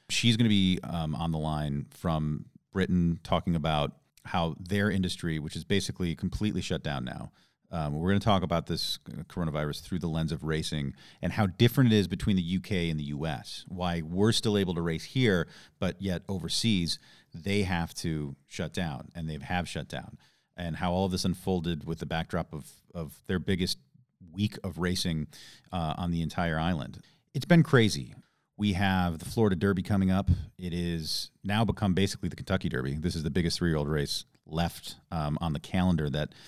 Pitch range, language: 80-100 Hz, English